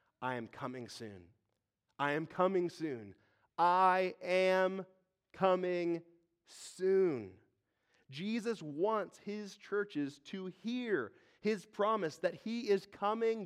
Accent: American